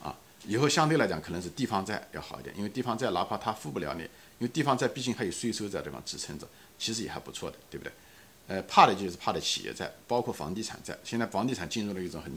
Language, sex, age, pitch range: Chinese, male, 50-69, 85-130 Hz